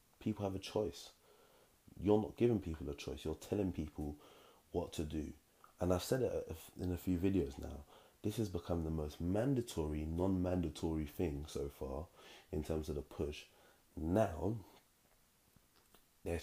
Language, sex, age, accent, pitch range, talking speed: English, male, 20-39, British, 75-90 Hz, 155 wpm